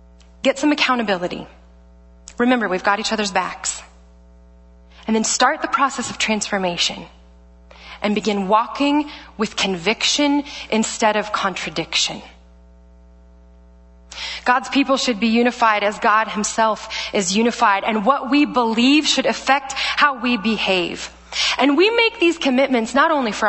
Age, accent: 20-39, American